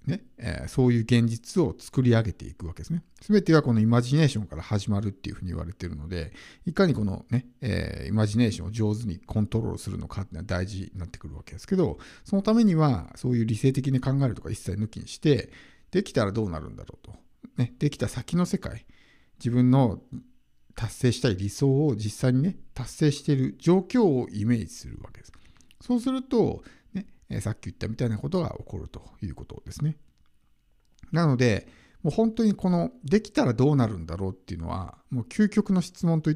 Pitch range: 100-150 Hz